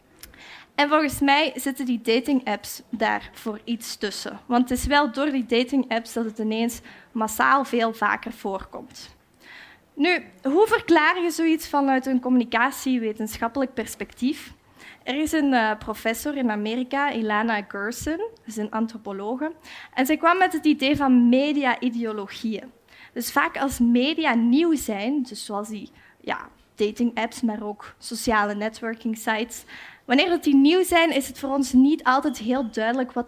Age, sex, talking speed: 20-39, female, 155 wpm